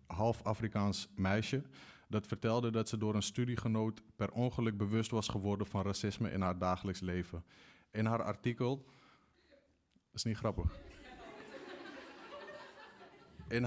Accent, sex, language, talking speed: Dutch, male, Dutch, 125 wpm